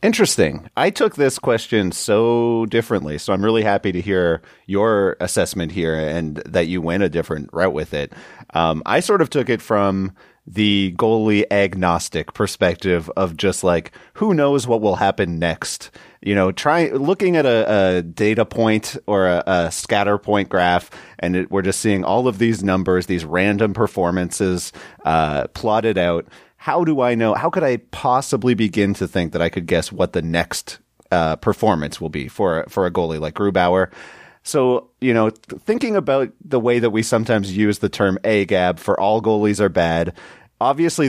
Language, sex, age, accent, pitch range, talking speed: English, male, 30-49, American, 90-115 Hz, 180 wpm